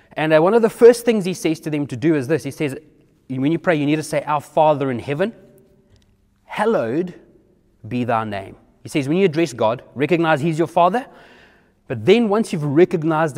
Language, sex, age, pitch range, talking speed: English, male, 30-49, 125-170 Hz, 205 wpm